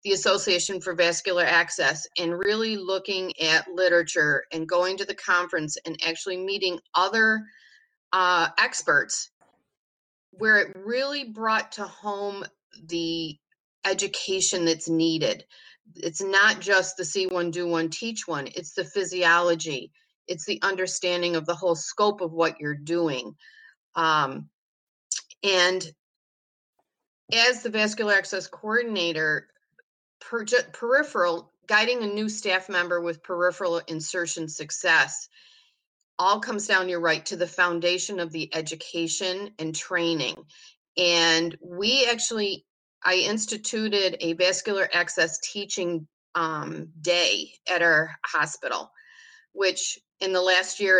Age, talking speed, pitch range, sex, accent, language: 40-59, 120 wpm, 170-205 Hz, female, American, English